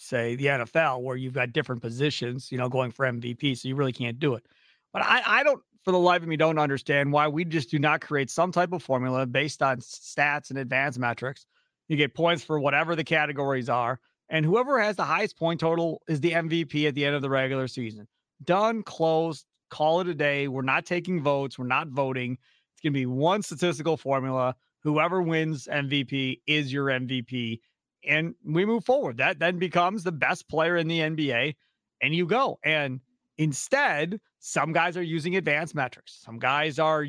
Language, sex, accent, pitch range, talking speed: English, male, American, 135-190 Hz, 200 wpm